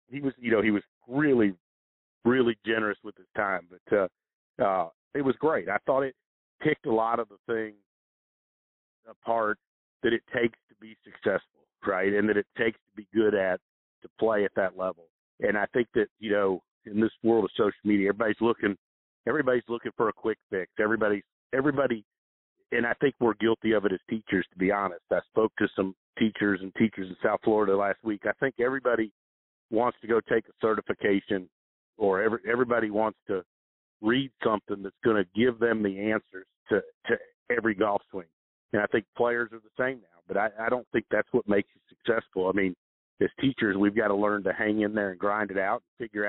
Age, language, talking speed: 50-69, English, 205 wpm